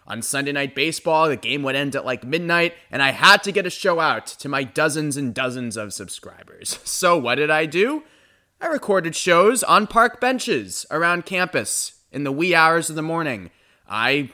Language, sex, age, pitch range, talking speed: English, male, 20-39, 125-165 Hz, 195 wpm